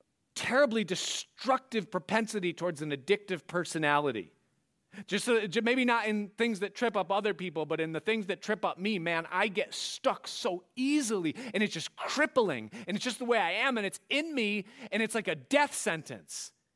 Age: 30-49